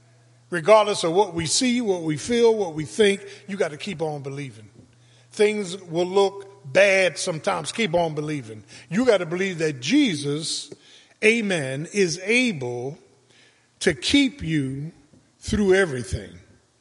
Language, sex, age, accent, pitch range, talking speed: English, male, 50-69, American, 120-200 Hz, 140 wpm